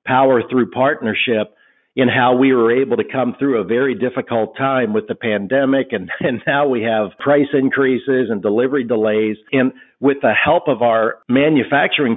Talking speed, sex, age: 175 wpm, male, 50-69